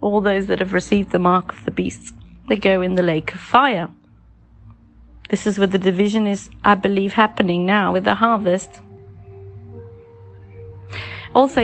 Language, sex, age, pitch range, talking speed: English, female, 30-49, 175-230 Hz, 160 wpm